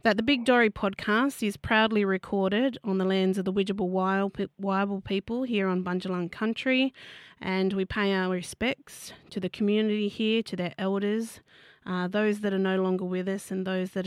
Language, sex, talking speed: English, female, 185 wpm